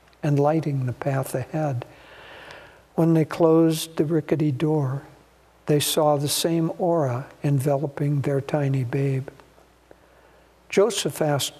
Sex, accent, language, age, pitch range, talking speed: male, American, English, 60-79, 135-160 Hz, 115 wpm